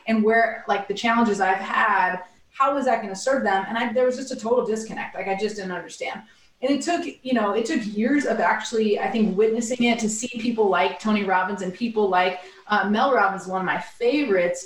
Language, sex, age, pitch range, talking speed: English, female, 30-49, 195-255 Hz, 230 wpm